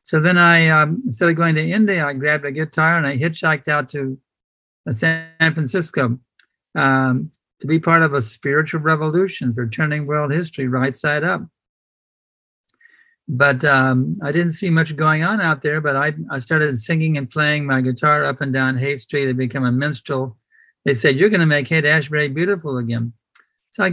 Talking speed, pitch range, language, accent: 185 wpm, 135-160 Hz, English, American